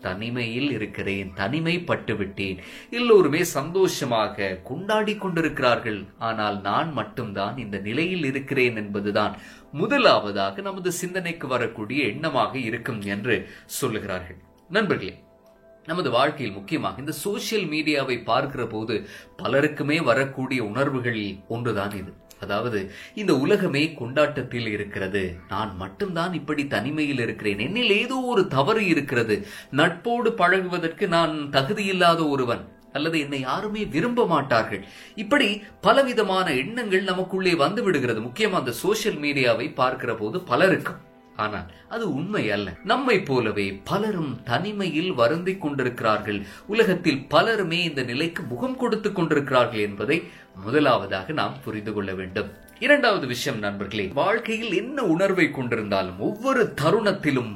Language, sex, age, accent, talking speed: Tamil, male, 20-39, native, 95 wpm